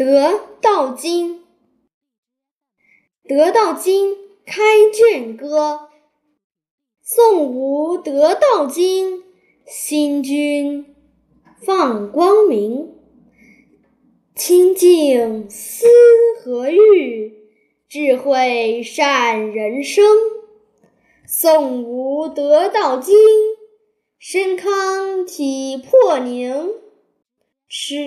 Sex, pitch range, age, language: female, 255-385 Hz, 10-29, Chinese